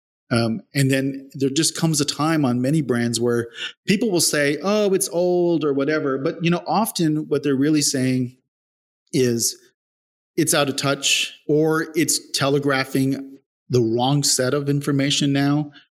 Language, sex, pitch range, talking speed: English, male, 130-165 Hz, 160 wpm